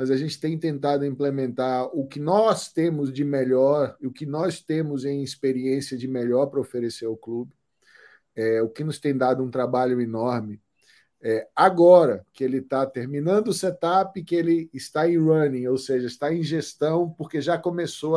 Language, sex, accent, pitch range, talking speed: Portuguese, male, Brazilian, 130-175 Hz, 175 wpm